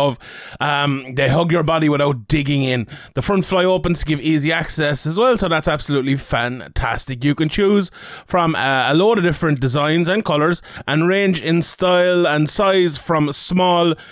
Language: English